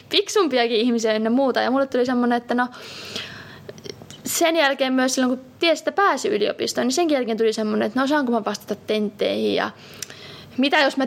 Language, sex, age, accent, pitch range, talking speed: Finnish, female, 20-39, native, 215-275 Hz, 185 wpm